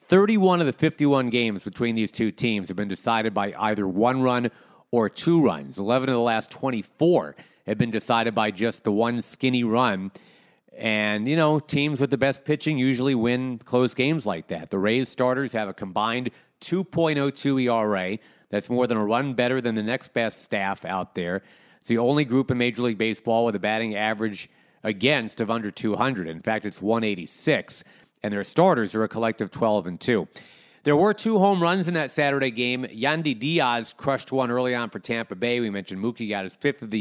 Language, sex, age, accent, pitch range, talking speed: English, male, 40-59, American, 110-140 Hz, 200 wpm